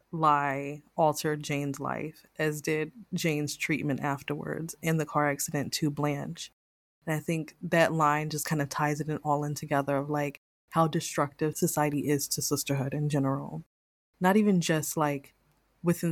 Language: English